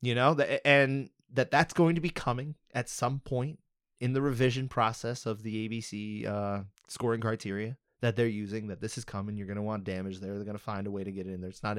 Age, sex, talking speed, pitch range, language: 20-39, male, 245 wpm, 105-125 Hz, English